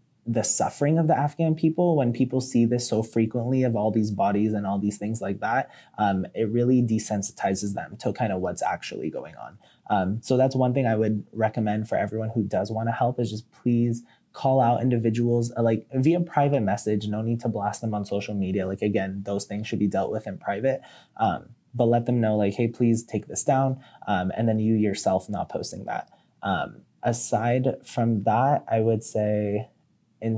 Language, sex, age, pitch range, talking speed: English, male, 20-39, 105-125 Hz, 205 wpm